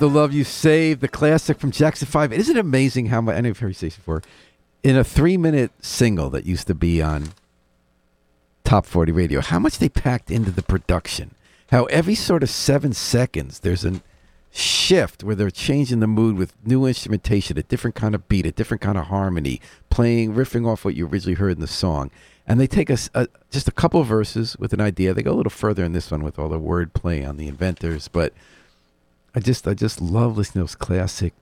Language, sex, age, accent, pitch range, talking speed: English, male, 50-69, American, 80-115 Hz, 210 wpm